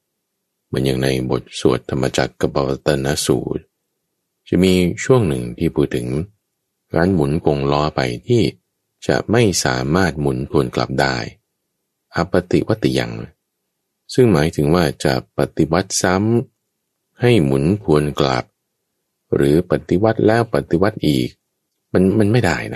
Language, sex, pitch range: Thai, male, 70-100 Hz